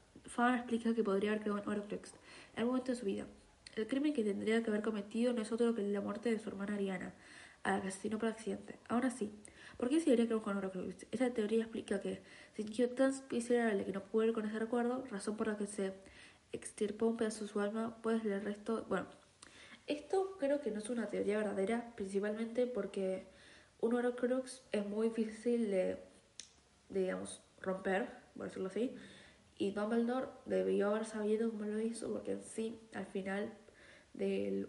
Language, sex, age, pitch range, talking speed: Spanish, female, 20-39, 200-235 Hz, 195 wpm